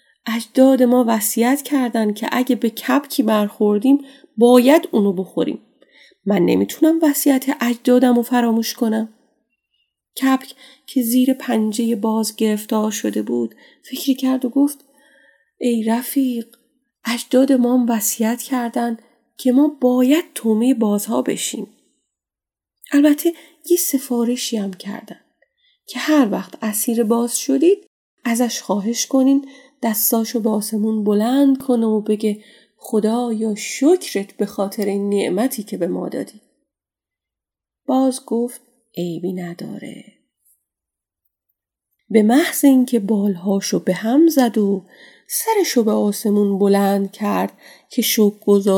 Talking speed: 115 wpm